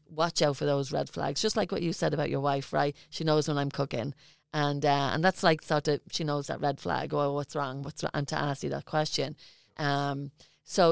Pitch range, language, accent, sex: 145-160 Hz, English, Irish, female